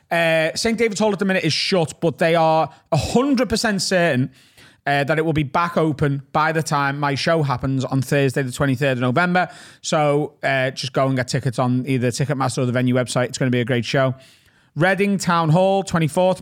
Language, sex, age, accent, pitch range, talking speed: English, male, 30-49, British, 125-175 Hz, 210 wpm